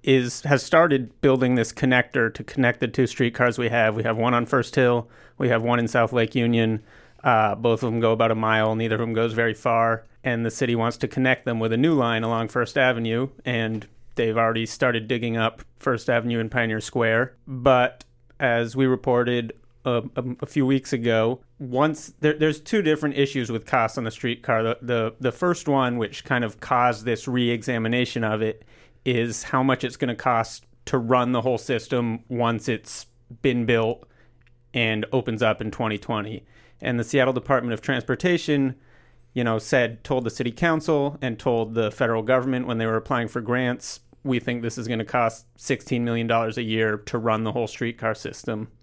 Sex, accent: male, American